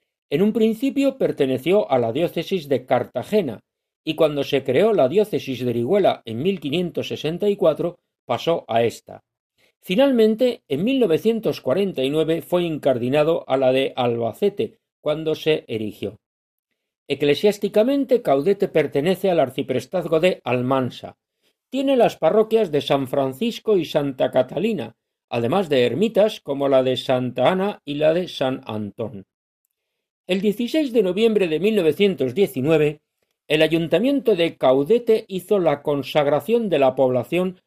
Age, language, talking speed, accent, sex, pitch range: 50-69, Spanish, 125 wpm, Spanish, male, 135-205 Hz